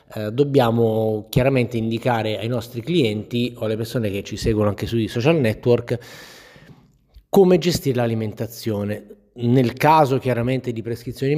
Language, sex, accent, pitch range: Italian, male, native, 110-135 Hz